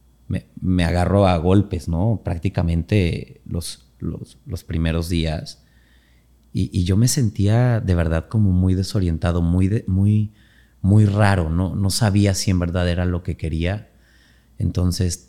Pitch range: 85-100 Hz